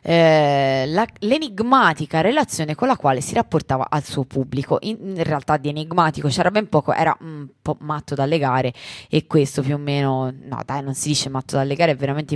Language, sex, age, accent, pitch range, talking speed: Italian, female, 20-39, native, 145-185 Hz, 200 wpm